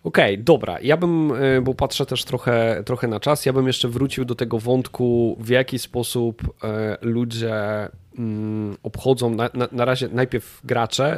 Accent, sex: native, male